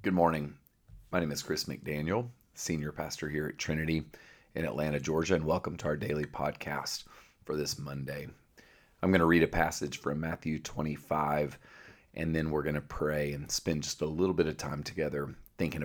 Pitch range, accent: 75-80 Hz, American